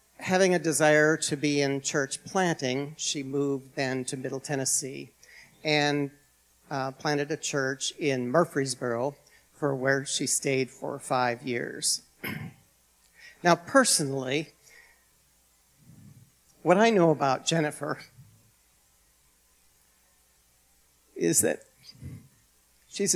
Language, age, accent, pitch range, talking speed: English, 50-69, American, 125-160 Hz, 100 wpm